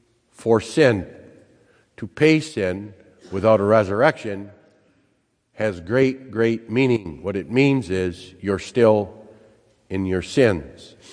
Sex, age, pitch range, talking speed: male, 50-69, 105-130 Hz, 115 wpm